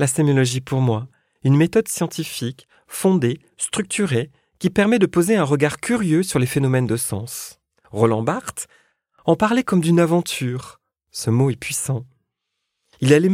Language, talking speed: French, 155 wpm